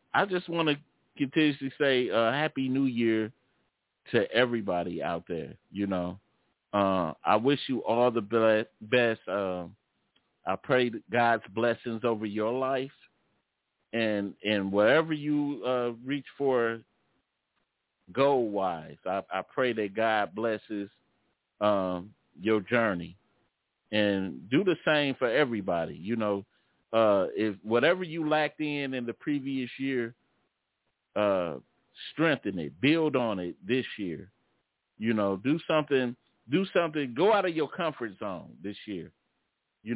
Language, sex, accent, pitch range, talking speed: English, male, American, 110-140 Hz, 135 wpm